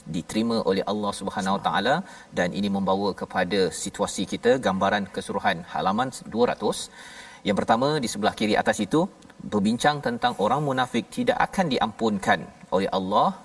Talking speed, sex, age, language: 145 wpm, male, 40-59, Malayalam